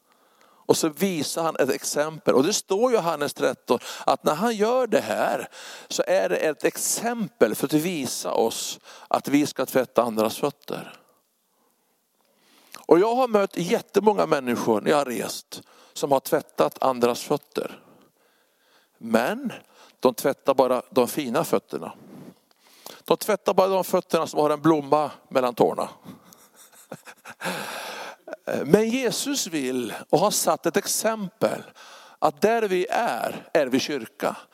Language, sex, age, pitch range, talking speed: Swedish, male, 60-79, 150-215 Hz, 140 wpm